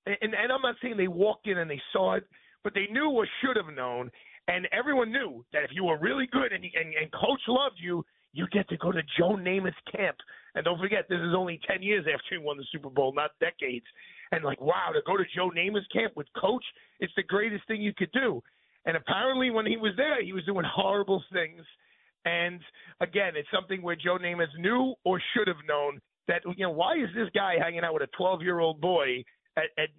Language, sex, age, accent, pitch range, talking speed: English, male, 40-59, American, 170-215 Hz, 235 wpm